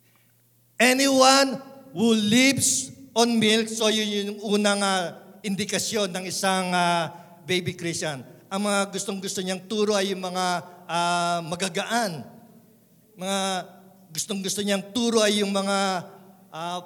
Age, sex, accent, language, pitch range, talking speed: 50-69, male, native, Filipino, 185-220 Hz, 130 wpm